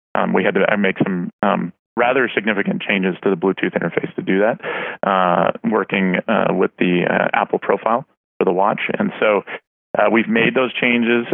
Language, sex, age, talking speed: English, male, 30-49, 185 wpm